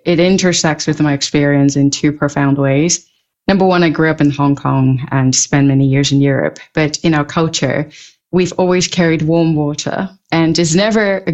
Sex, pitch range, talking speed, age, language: female, 150-185 Hz, 190 wpm, 30-49, English